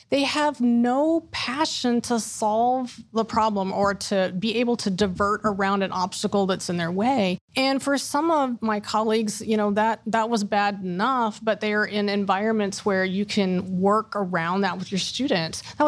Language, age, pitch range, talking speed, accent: English, 30-49, 200-255 Hz, 180 wpm, American